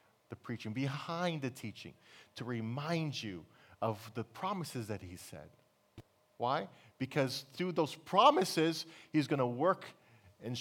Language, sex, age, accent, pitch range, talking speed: English, male, 40-59, American, 120-155 Hz, 135 wpm